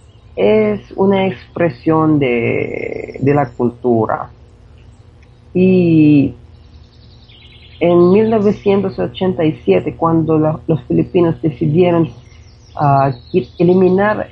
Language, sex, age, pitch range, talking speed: Spanish, female, 40-59, 125-185 Hz, 70 wpm